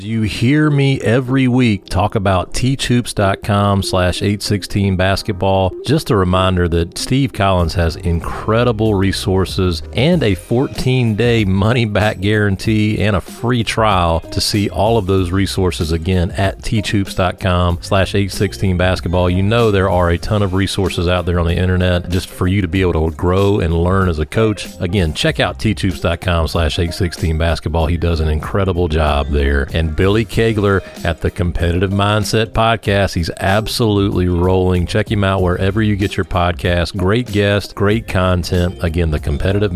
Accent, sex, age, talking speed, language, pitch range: American, male, 40-59, 160 wpm, English, 90-110 Hz